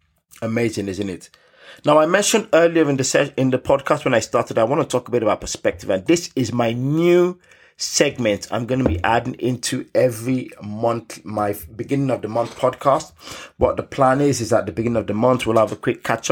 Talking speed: 220 wpm